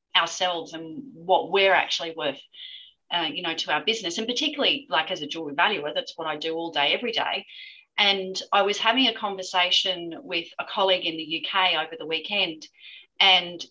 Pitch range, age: 160-195 Hz, 30-49